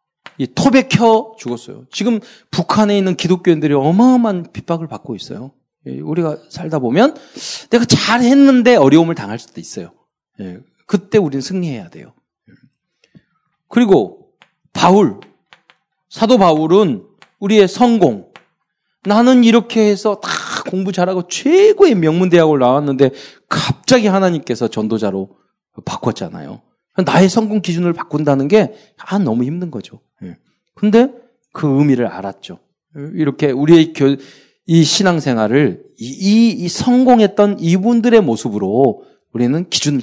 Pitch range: 155-230 Hz